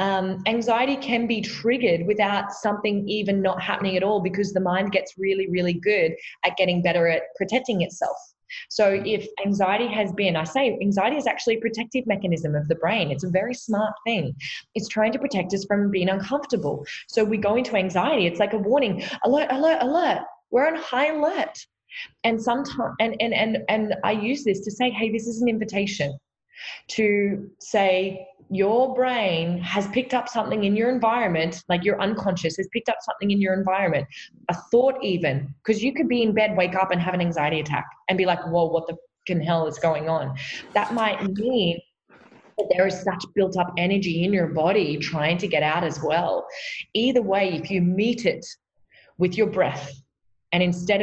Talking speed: 195 wpm